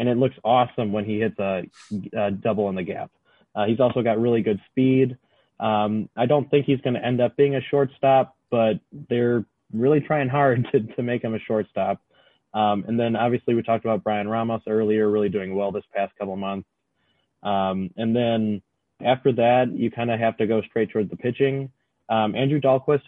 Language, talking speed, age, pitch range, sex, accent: English, 205 wpm, 20-39, 110-135 Hz, male, American